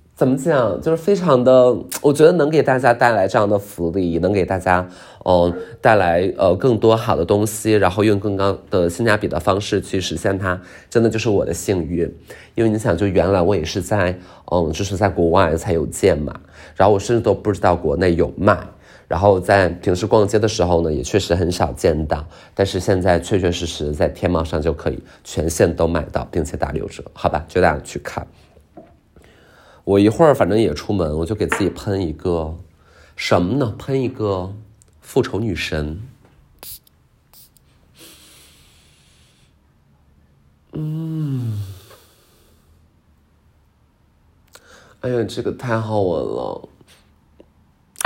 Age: 20-39